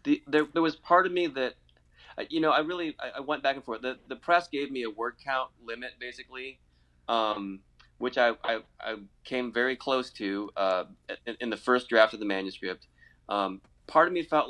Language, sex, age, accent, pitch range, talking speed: English, male, 20-39, American, 100-130 Hz, 210 wpm